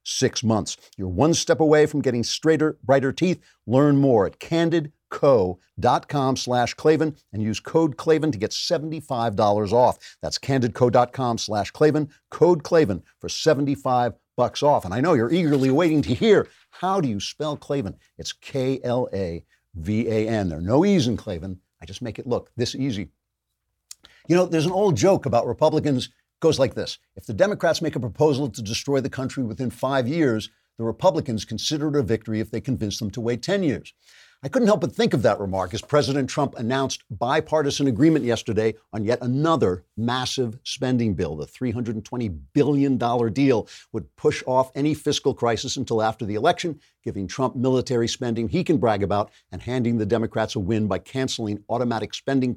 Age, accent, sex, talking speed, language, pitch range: 50-69, American, male, 180 wpm, English, 110-145 Hz